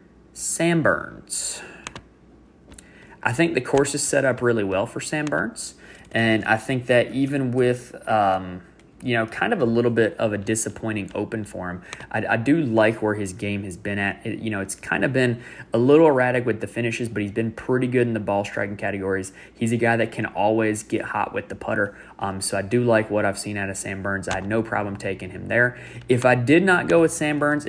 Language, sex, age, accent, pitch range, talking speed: English, male, 20-39, American, 100-120 Hz, 225 wpm